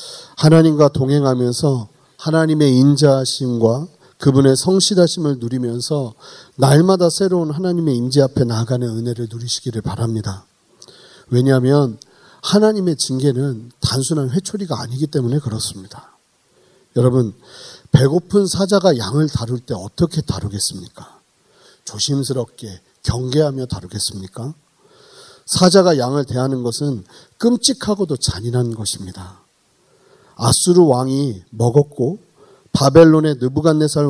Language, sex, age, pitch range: Korean, male, 40-59, 125-180 Hz